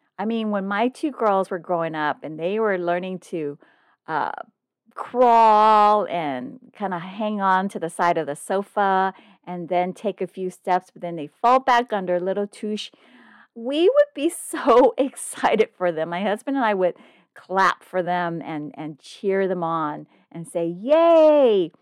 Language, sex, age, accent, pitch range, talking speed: English, female, 40-59, American, 175-250 Hz, 180 wpm